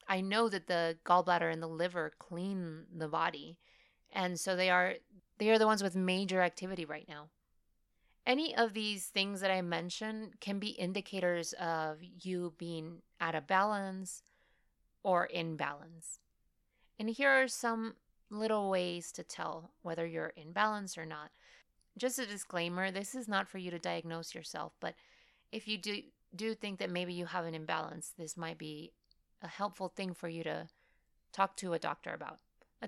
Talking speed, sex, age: 175 wpm, female, 30-49